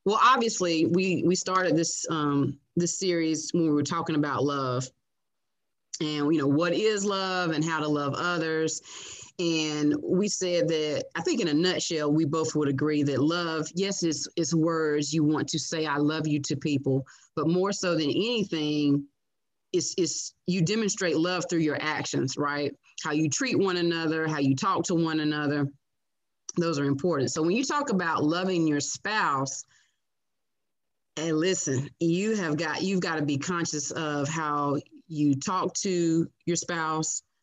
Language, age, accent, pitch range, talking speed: English, 30-49, American, 150-185 Hz, 170 wpm